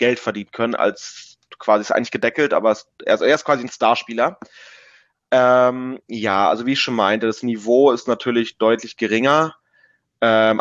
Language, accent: German, German